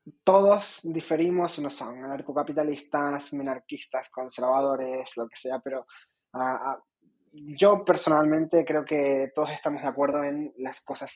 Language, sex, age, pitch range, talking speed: Spanish, male, 20-39, 125-150 Hz, 125 wpm